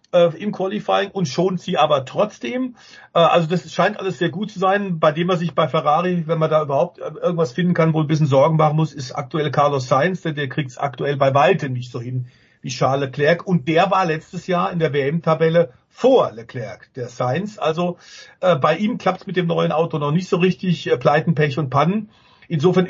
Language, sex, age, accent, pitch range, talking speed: German, male, 50-69, German, 150-185 Hz, 210 wpm